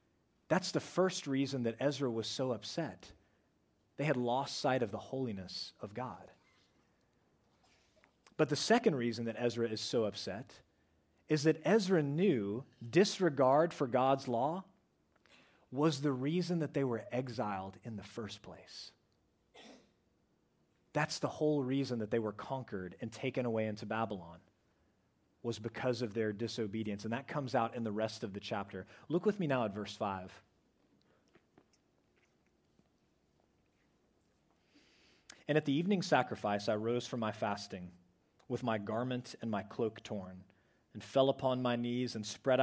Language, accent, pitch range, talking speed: English, American, 105-130 Hz, 150 wpm